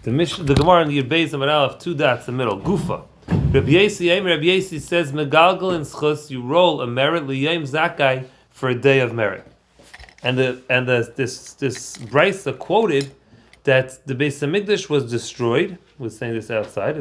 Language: English